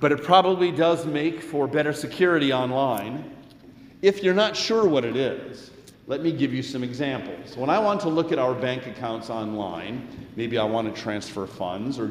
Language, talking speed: English, 195 wpm